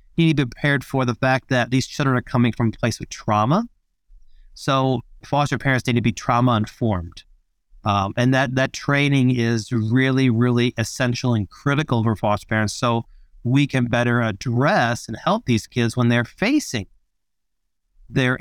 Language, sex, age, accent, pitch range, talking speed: English, male, 40-59, American, 110-135 Hz, 170 wpm